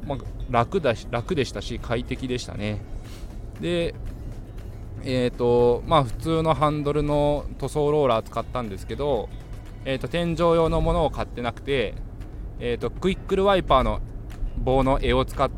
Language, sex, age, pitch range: Japanese, male, 20-39, 110-145 Hz